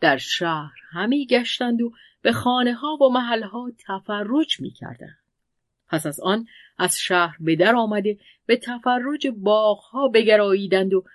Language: Persian